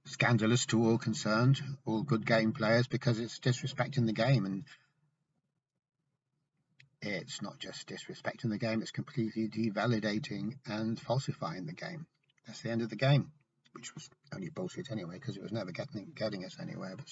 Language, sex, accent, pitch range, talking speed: English, male, British, 110-150 Hz, 165 wpm